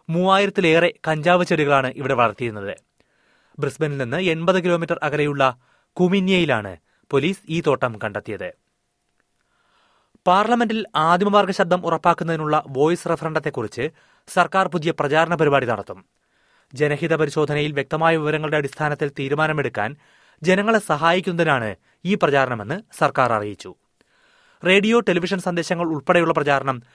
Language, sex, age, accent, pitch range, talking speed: Malayalam, male, 30-49, native, 135-175 Hz, 95 wpm